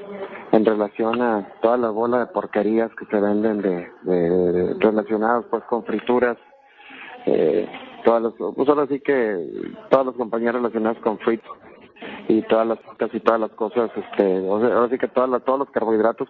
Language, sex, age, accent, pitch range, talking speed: English, male, 40-59, Mexican, 110-125 Hz, 175 wpm